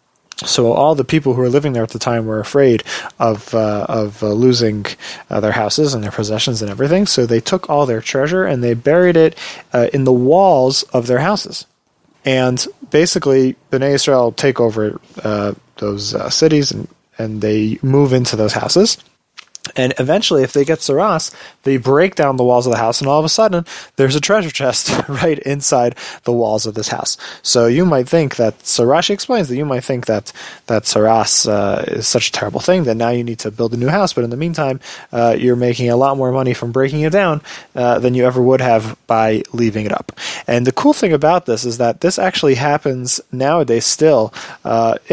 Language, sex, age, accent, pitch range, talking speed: English, male, 30-49, American, 115-145 Hz, 210 wpm